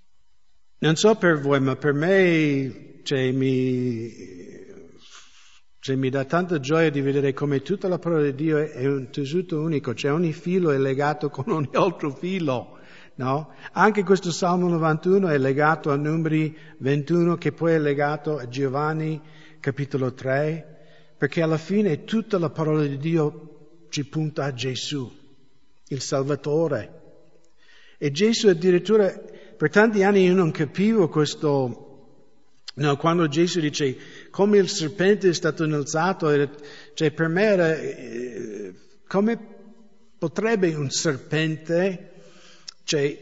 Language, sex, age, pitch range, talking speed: English, male, 60-79, 140-175 Hz, 130 wpm